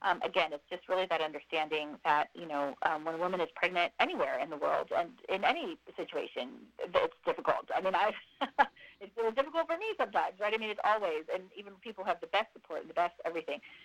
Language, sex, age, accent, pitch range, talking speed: English, female, 30-49, American, 155-205 Hz, 210 wpm